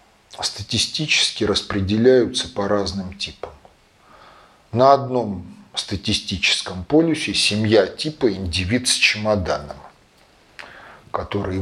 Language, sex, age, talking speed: Russian, male, 40-59, 75 wpm